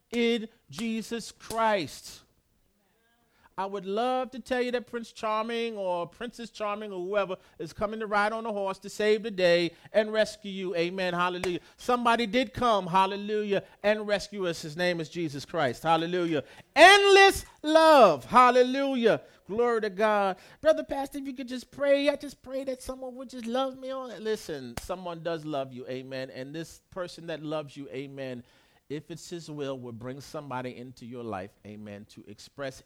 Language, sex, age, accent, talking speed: English, male, 40-59, American, 170 wpm